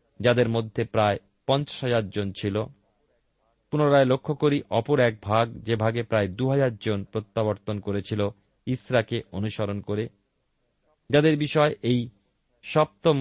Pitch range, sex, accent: 105-145 Hz, male, native